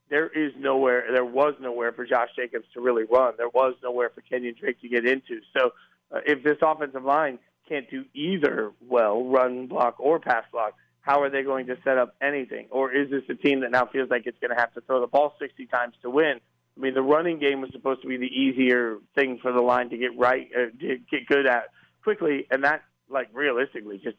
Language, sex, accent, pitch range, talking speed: English, male, American, 125-140 Hz, 230 wpm